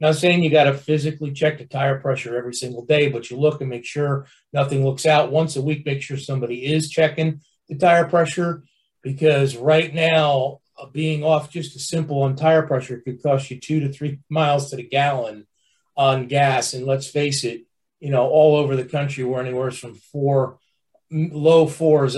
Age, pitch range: 40-59, 135-165 Hz